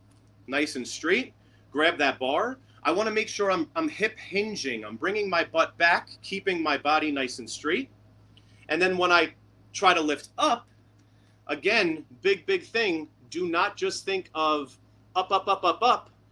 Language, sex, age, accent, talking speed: English, male, 30-49, American, 175 wpm